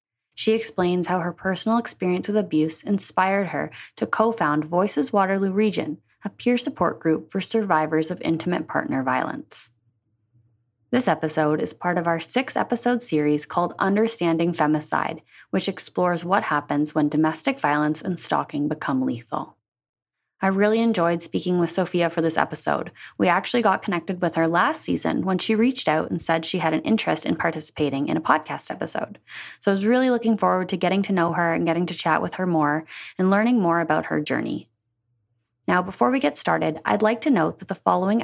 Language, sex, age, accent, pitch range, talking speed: English, female, 20-39, American, 150-200 Hz, 180 wpm